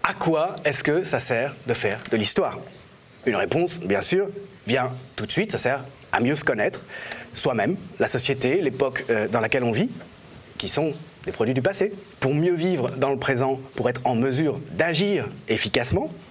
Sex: male